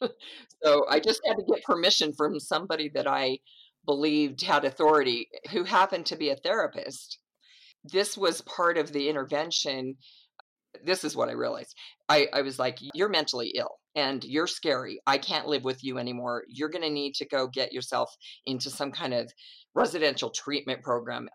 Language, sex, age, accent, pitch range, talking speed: English, female, 50-69, American, 130-155 Hz, 175 wpm